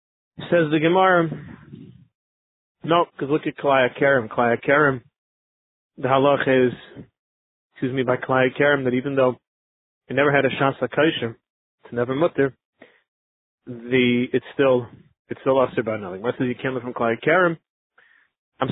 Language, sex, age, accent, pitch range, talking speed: English, male, 30-49, American, 130-165 Hz, 145 wpm